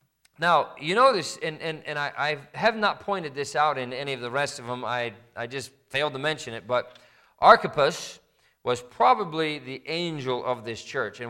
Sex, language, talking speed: male, English, 200 wpm